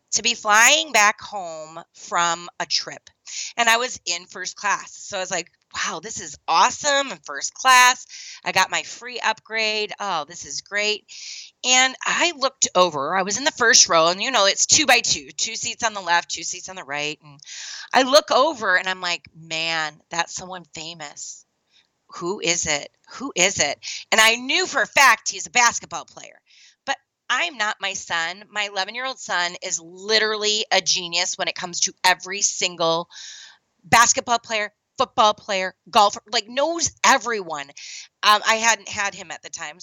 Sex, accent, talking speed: female, American, 180 wpm